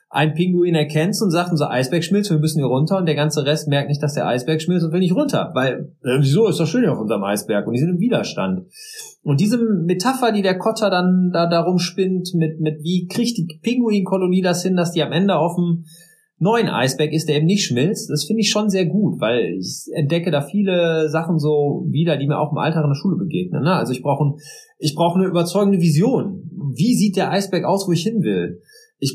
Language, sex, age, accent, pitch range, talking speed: German, male, 30-49, German, 150-190 Hz, 235 wpm